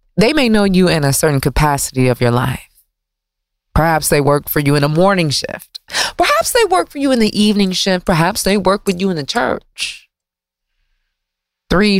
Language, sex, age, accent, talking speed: English, female, 30-49, American, 190 wpm